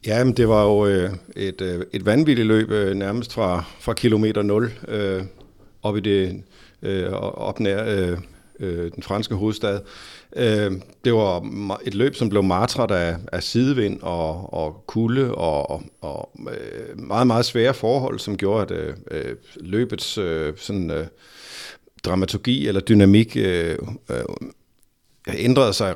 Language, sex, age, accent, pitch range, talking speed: Danish, male, 50-69, native, 90-110 Hz, 105 wpm